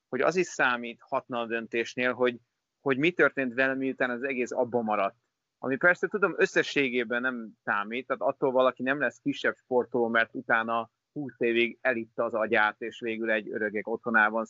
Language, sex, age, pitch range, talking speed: Hungarian, male, 30-49, 115-135 Hz, 170 wpm